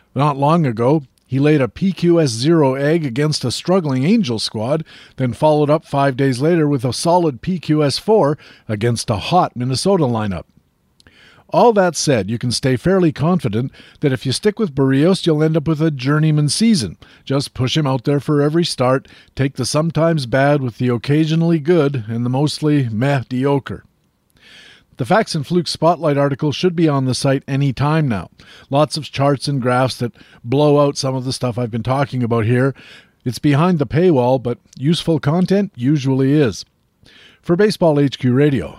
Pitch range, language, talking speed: 125-155 Hz, English, 175 wpm